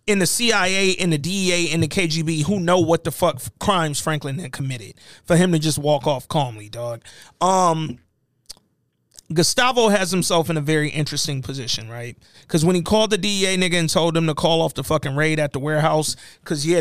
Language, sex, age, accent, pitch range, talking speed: English, male, 30-49, American, 150-205 Hz, 205 wpm